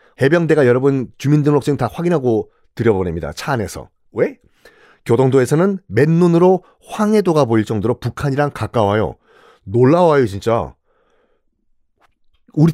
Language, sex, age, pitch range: Korean, male, 40-59, 120-180 Hz